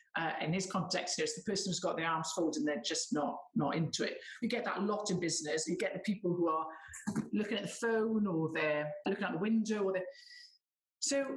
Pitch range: 175-230 Hz